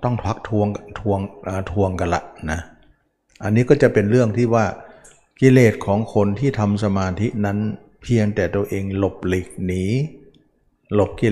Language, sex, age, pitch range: Thai, male, 60-79, 90-110 Hz